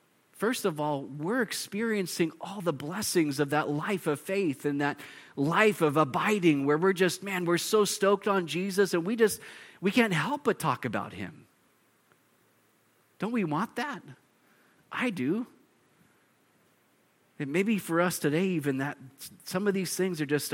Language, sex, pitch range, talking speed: English, male, 145-195 Hz, 165 wpm